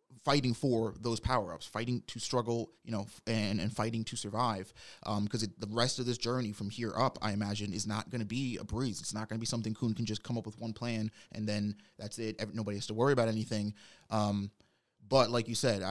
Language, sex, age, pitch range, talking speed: English, male, 20-39, 105-120 Hz, 235 wpm